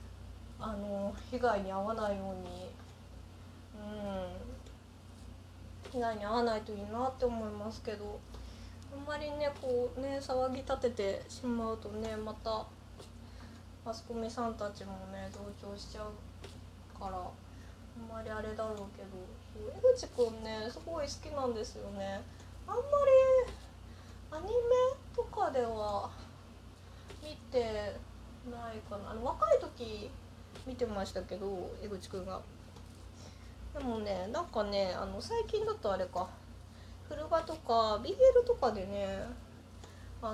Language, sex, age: Japanese, female, 20-39